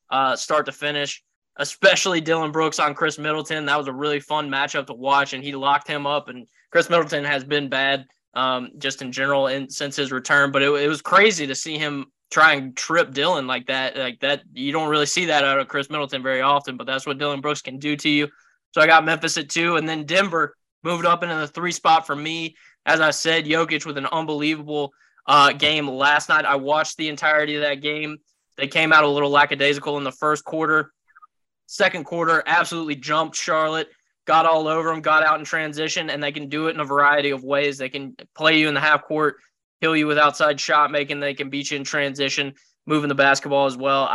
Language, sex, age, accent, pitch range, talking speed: English, male, 10-29, American, 140-160 Hz, 225 wpm